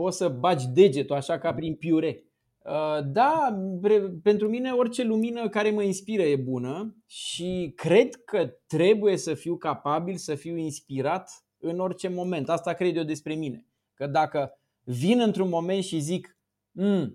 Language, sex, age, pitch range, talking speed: Romanian, male, 20-39, 155-210 Hz, 155 wpm